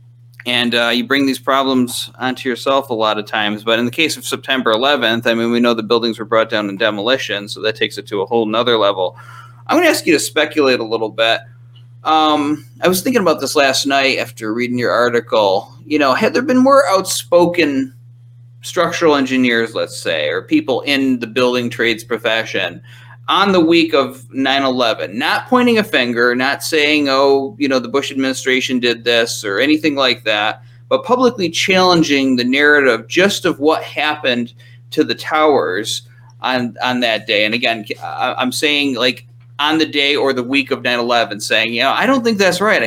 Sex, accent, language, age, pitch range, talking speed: male, American, English, 30-49, 120-155 Hz, 195 wpm